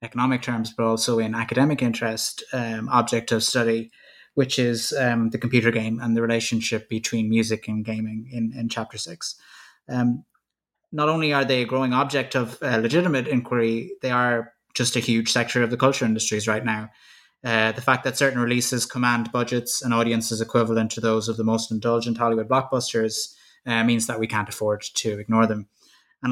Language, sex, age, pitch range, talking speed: English, male, 20-39, 115-130 Hz, 180 wpm